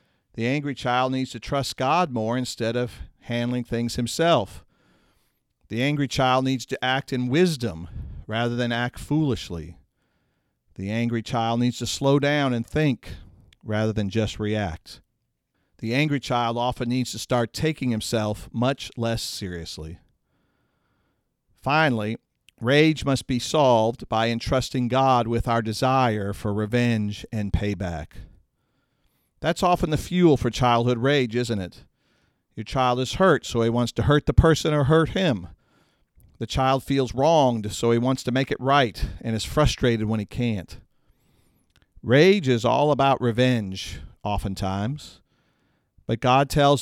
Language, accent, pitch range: English, American, 105-135 Hz